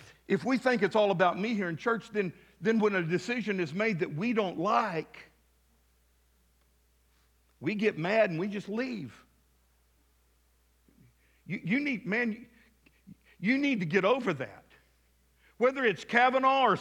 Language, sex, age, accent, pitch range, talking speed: English, male, 50-69, American, 150-235 Hz, 150 wpm